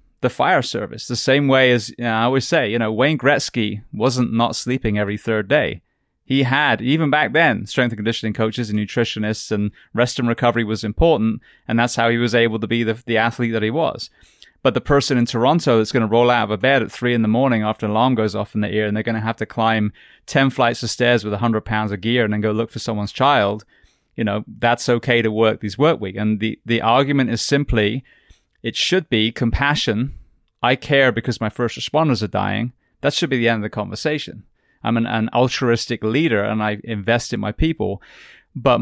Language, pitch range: English, 110-125 Hz